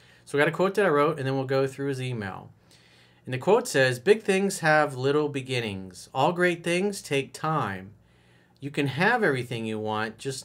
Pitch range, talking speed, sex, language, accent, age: 100-145 Hz, 205 wpm, male, English, American, 40-59